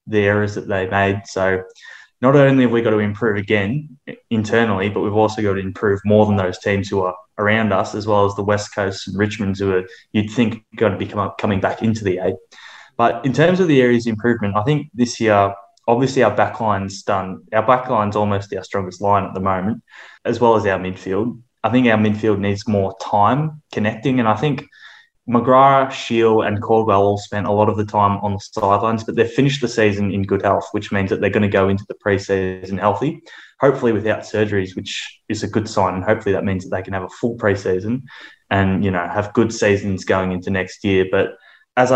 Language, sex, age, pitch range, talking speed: English, male, 20-39, 100-115 Hz, 225 wpm